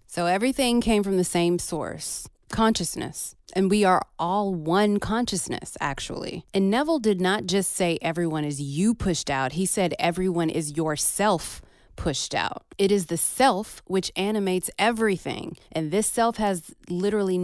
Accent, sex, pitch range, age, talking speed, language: American, female, 165-215 Hz, 30-49, 155 wpm, English